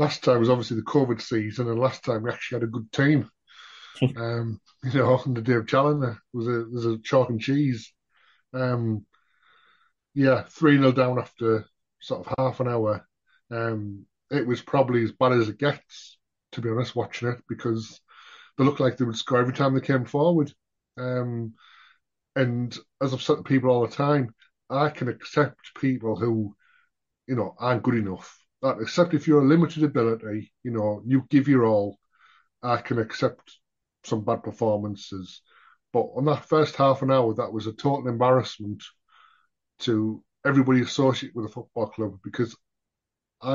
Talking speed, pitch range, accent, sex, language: 175 wpm, 110-130 Hz, British, male, English